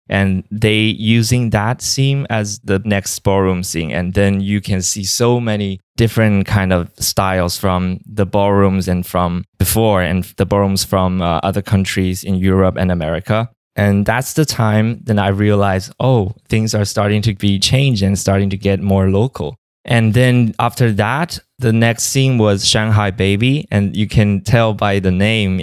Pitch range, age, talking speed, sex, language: 95-105 Hz, 20-39, 175 wpm, male, English